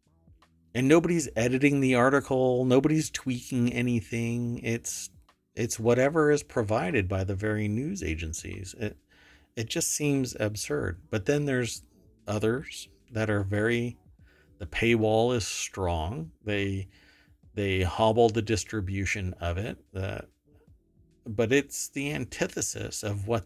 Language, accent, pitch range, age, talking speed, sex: English, American, 95-120 Hz, 50-69, 125 wpm, male